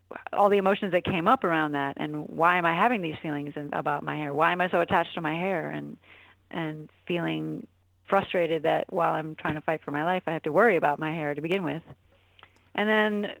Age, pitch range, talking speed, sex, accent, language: 40-59, 155-190 Hz, 230 wpm, female, American, English